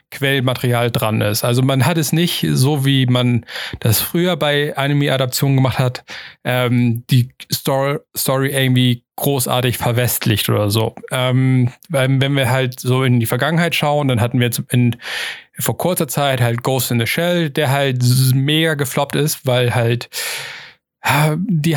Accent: German